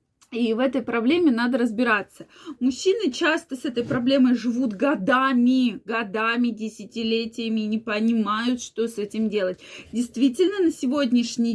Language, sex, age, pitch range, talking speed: Russian, female, 20-39, 225-290 Hz, 130 wpm